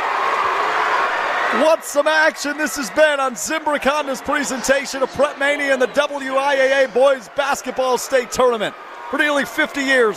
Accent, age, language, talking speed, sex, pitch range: American, 40-59, English, 135 wpm, male, 235-300 Hz